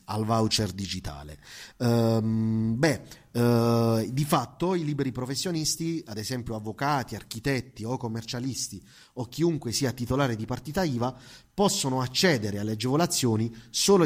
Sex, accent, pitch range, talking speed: male, native, 110-145 Hz, 125 wpm